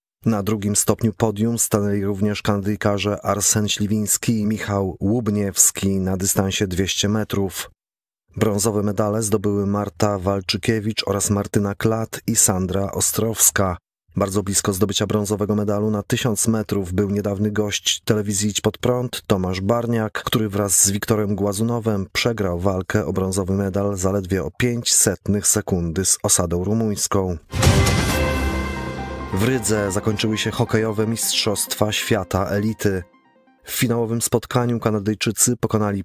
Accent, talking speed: native, 120 wpm